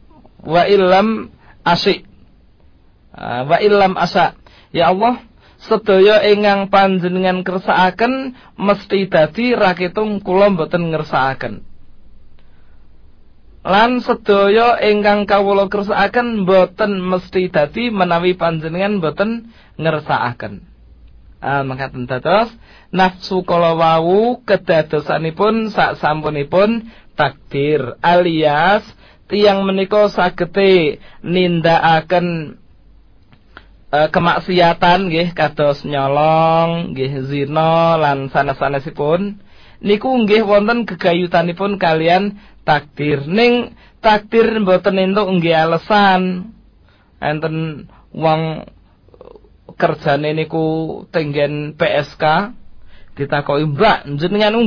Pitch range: 155-205 Hz